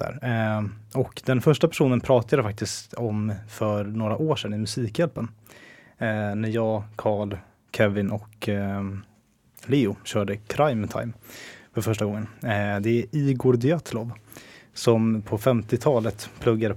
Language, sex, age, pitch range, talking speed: Swedish, male, 20-39, 105-120 Hz, 125 wpm